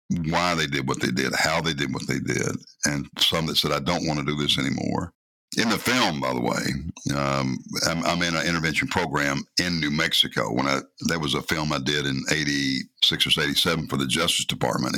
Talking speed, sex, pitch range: 215 wpm, male, 70-80 Hz